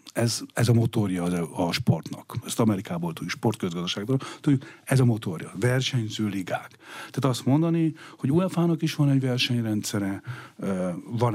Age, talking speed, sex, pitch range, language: 50-69, 145 wpm, male, 95-125 Hz, Hungarian